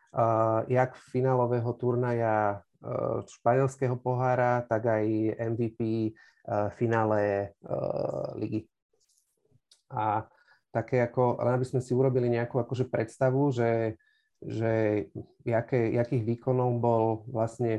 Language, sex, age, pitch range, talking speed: Slovak, male, 30-49, 110-125 Hz, 105 wpm